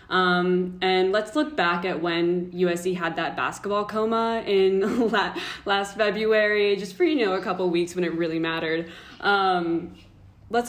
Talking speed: 170 wpm